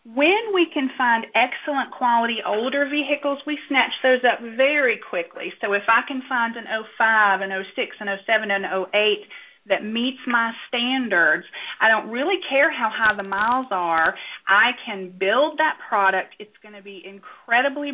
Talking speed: 165 wpm